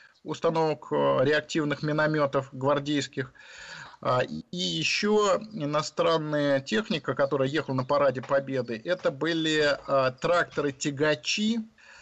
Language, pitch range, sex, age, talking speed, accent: Russian, 130-160 Hz, male, 50-69, 80 wpm, native